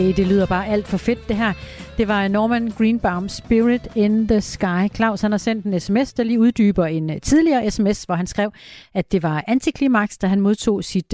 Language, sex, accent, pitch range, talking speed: Danish, female, native, 180-230 Hz, 210 wpm